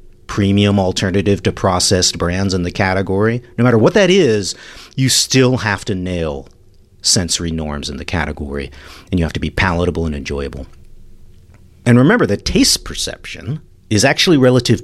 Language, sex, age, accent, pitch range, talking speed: English, male, 50-69, American, 90-125 Hz, 160 wpm